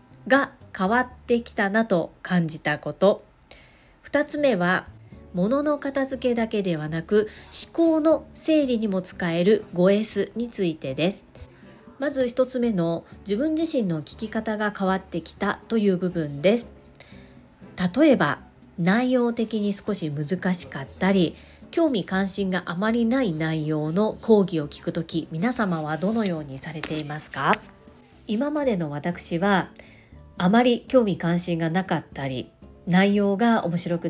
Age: 40-59